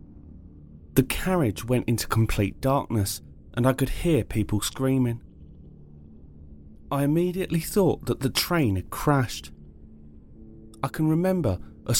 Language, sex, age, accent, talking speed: English, male, 30-49, British, 120 wpm